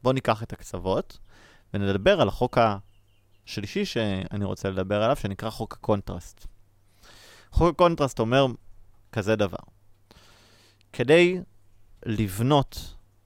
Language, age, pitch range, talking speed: Hebrew, 30-49, 100-130 Hz, 100 wpm